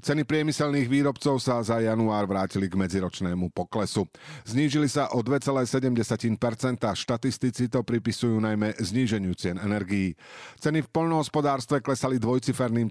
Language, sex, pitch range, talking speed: Slovak, male, 100-135 Hz, 125 wpm